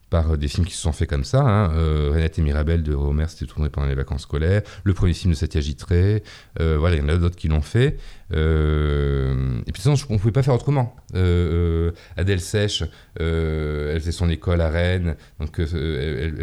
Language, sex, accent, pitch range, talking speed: French, male, French, 80-100 Hz, 225 wpm